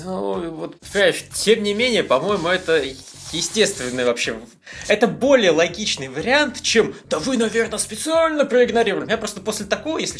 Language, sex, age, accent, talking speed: Russian, male, 20-39, native, 140 wpm